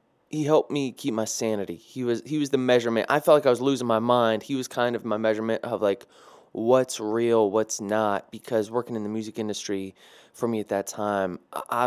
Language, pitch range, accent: English, 110-140 Hz, American